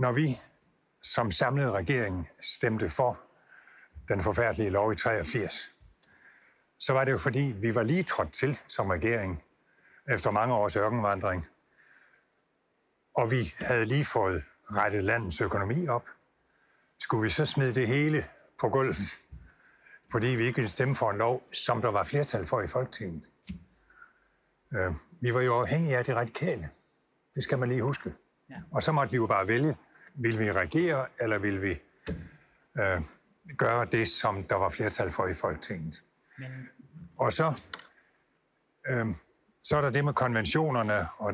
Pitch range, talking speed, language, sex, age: 105-140 Hz, 150 wpm, Danish, male, 60-79